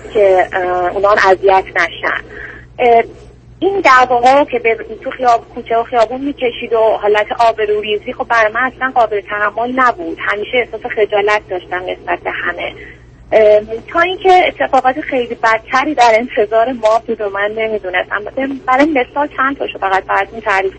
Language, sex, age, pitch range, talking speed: Persian, female, 30-49, 205-240 Hz, 140 wpm